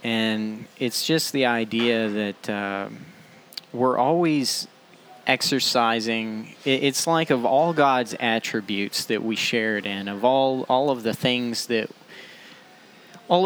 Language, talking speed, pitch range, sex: English, 125 wpm, 115-150 Hz, male